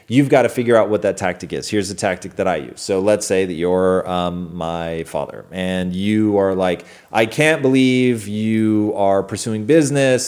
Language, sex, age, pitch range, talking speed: English, male, 30-49, 100-125 Hz, 200 wpm